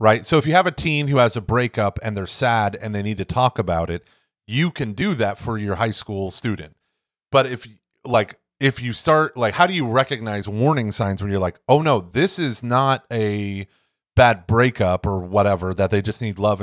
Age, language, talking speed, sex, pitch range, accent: 30-49, English, 220 wpm, male, 100-130 Hz, American